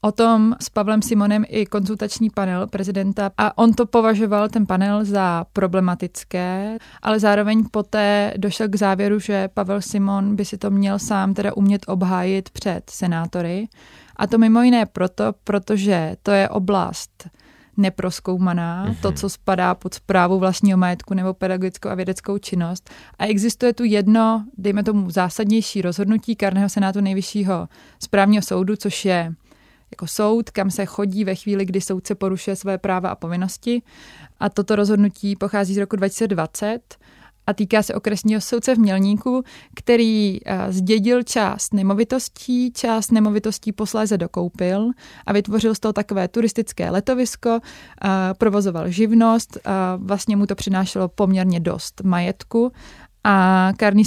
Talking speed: 145 wpm